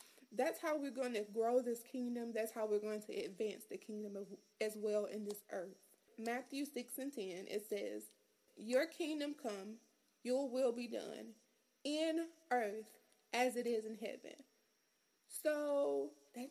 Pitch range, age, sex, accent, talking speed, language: 220-275 Hz, 20-39, female, American, 155 wpm, English